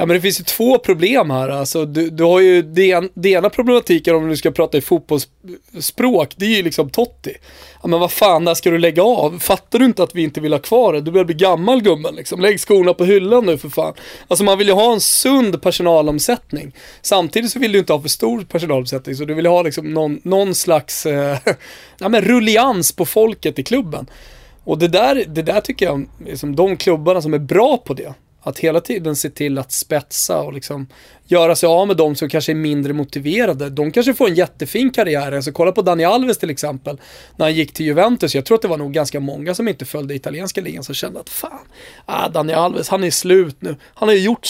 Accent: native